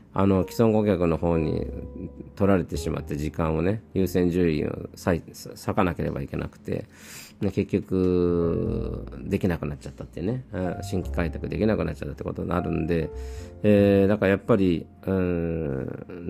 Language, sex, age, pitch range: Japanese, male, 40-59, 85-110 Hz